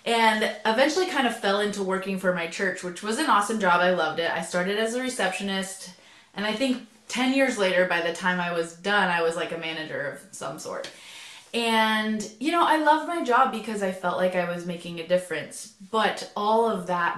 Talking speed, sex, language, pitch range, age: 220 wpm, female, English, 175-225 Hz, 20-39